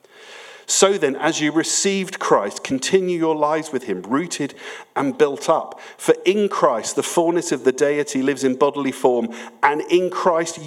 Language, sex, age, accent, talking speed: English, male, 50-69, British, 170 wpm